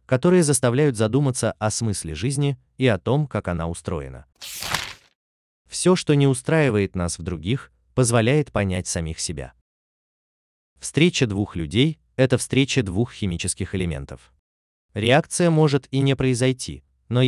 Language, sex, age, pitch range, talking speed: Russian, male, 30-49, 80-130 Hz, 130 wpm